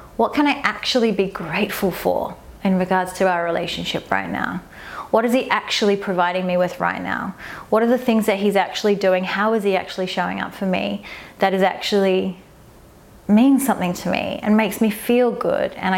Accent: Australian